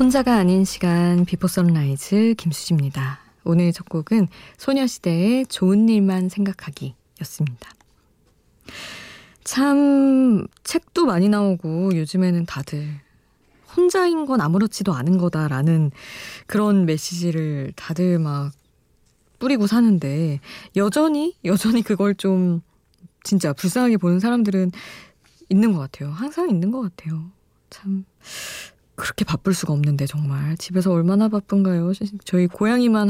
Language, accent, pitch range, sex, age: Korean, native, 160-205 Hz, female, 20-39